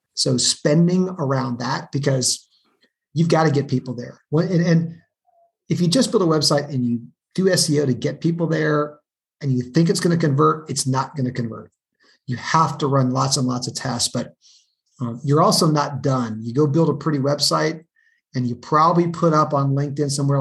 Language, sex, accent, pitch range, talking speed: English, male, American, 130-165 Hz, 200 wpm